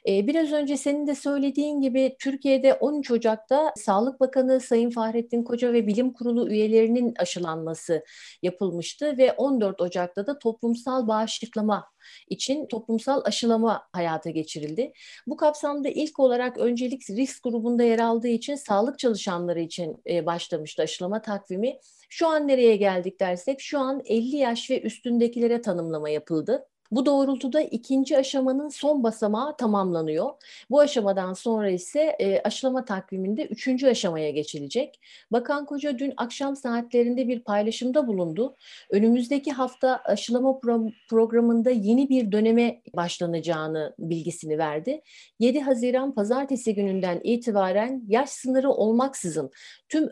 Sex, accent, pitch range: female, native, 200-265 Hz